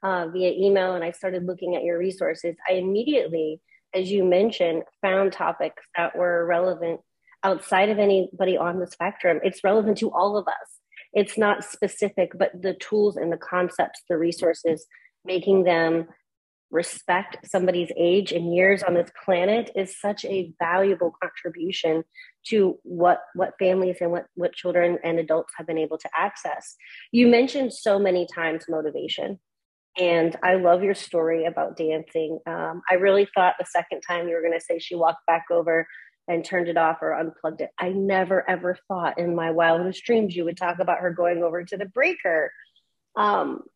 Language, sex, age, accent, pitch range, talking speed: English, female, 30-49, American, 170-195 Hz, 175 wpm